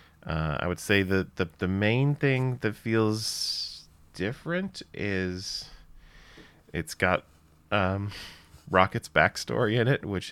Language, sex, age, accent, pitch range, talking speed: English, male, 20-39, American, 80-100 Hz, 120 wpm